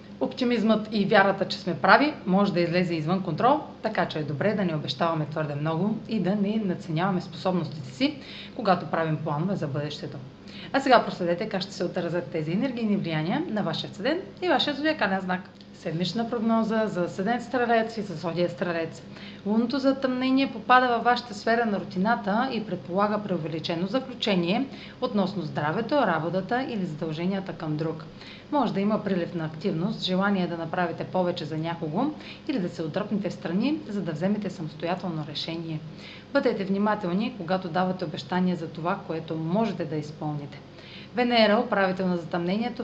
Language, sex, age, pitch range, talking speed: Bulgarian, female, 30-49, 170-220 Hz, 160 wpm